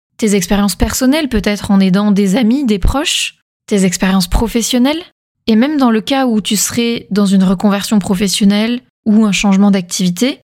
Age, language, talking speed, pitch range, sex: 20-39, French, 165 wpm, 195-235 Hz, female